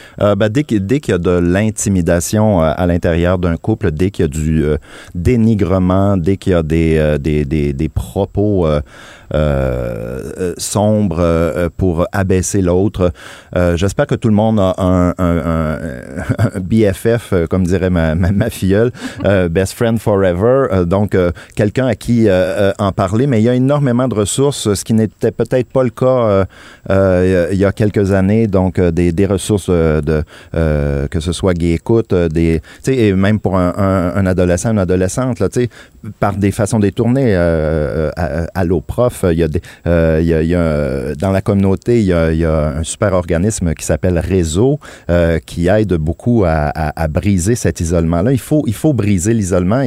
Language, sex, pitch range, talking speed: French, male, 85-110 Hz, 200 wpm